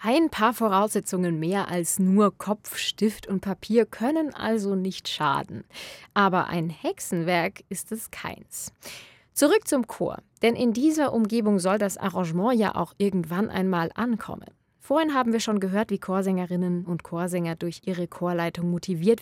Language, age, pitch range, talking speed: German, 20-39, 175-225 Hz, 150 wpm